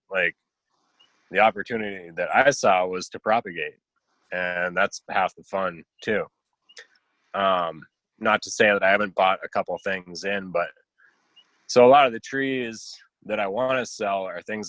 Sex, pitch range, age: male, 90-110 Hz, 20-39